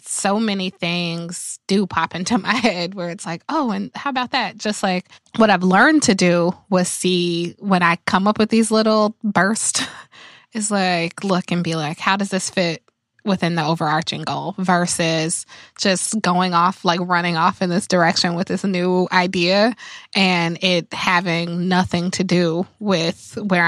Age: 20-39